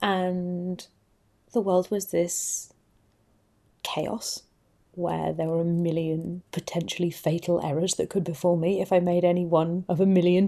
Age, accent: 30-49, British